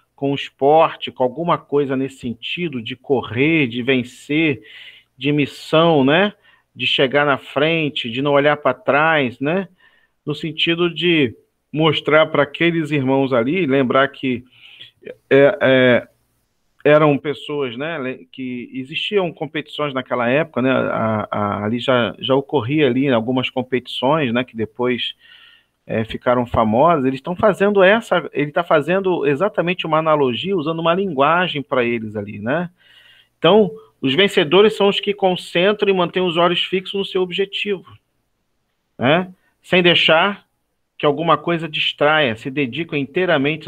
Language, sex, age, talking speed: Portuguese, male, 40-59, 140 wpm